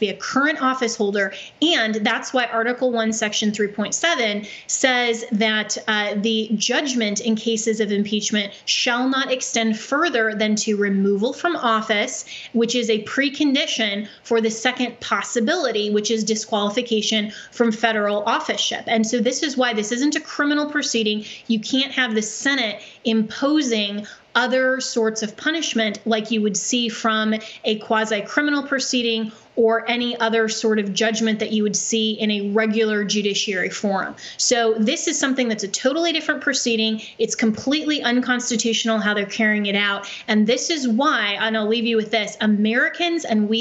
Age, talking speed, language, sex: 20-39, 165 wpm, English, female